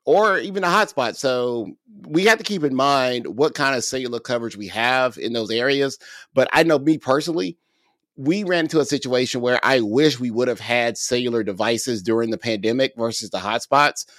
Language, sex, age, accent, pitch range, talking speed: English, male, 30-49, American, 120-145 Hz, 195 wpm